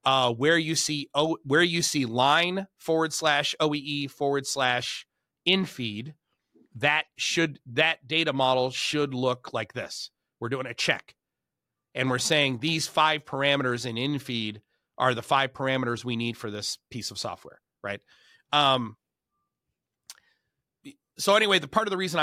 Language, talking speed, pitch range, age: English, 150 wpm, 115-145 Hz, 30-49